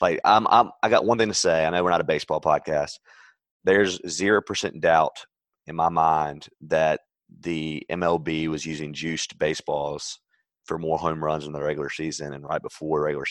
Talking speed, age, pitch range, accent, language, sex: 190 wpm, 30-49, 75-85 Hz, American, English, male